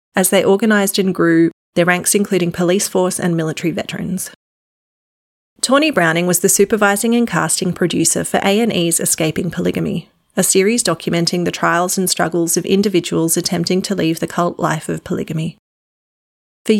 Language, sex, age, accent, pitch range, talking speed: English, female, 30-49, Australian, 170-195 Hz, 155 wpm